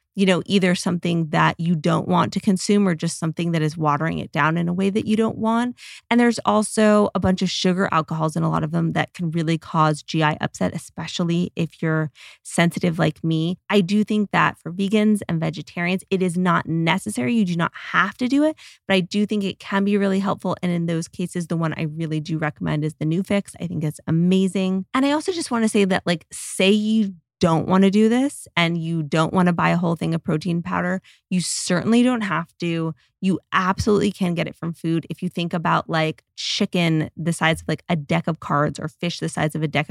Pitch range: 160-195 Hz